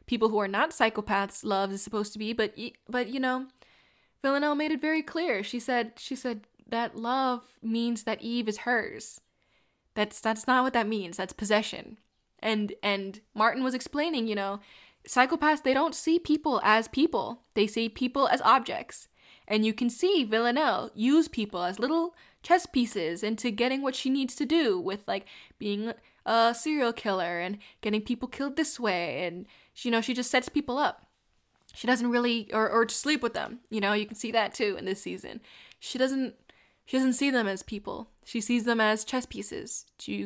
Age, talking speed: 10-29, 190 wpm